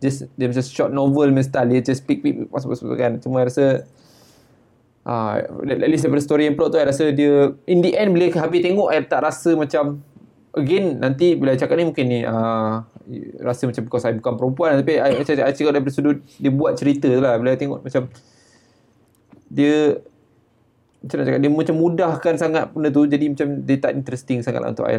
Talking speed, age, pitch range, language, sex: 200 wpm, 20-39, 120-150 Hz, Malay, male